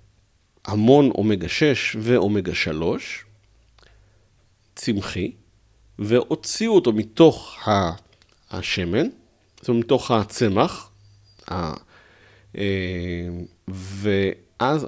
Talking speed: 60 wpm